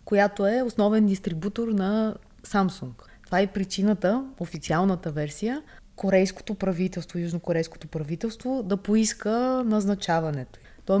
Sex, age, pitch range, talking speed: female, 30-49, 175-220 Hz, 110 wpm